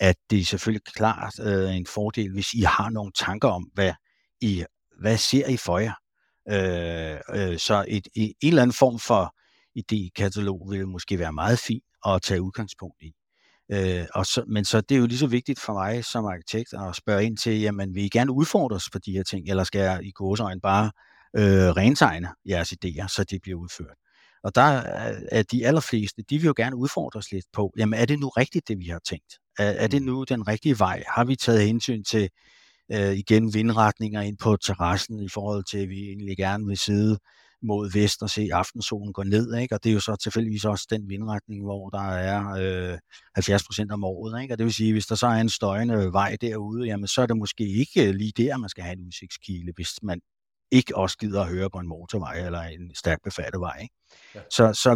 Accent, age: native, 60-79